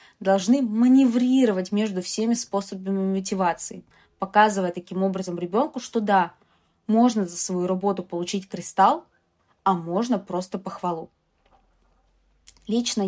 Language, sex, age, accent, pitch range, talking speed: Russian, female, 20-39, native, 190-240 Hz, 105 wpm